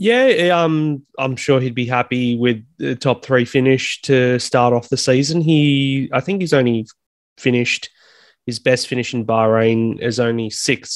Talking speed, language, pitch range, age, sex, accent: 170 wpm, English, 110-125 Hz, 20-39, male, Australian